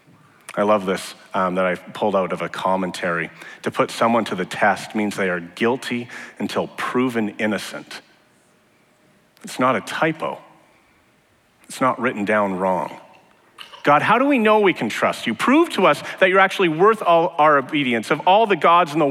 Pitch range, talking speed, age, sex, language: 105-155 Hz, 180 wpm, 40-59, male, English